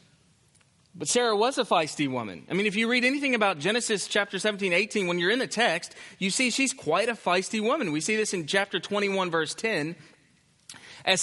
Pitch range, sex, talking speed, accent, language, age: 170-230 Hz, male, 205 wpm, American, English, 30-49